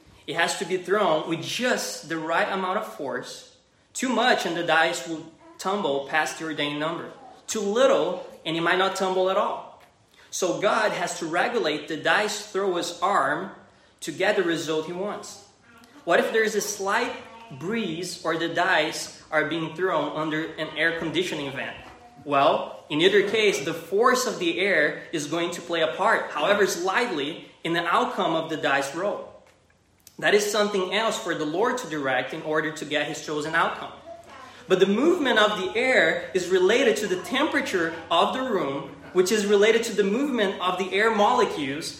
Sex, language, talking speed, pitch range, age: male, English, 185 wpm, 160-220 Hz, 20-39